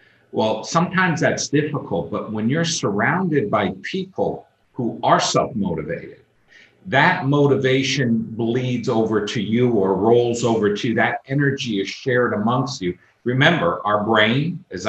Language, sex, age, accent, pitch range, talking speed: English, male, 50-69, American, 110-150 Hz, 135 wpm